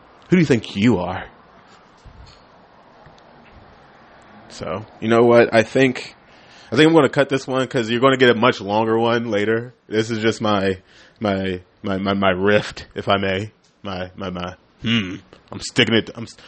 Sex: male